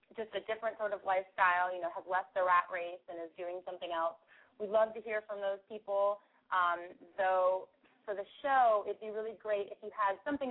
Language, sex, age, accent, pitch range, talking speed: English, female, 20-39, American, 185-220 Hz, 225 wpm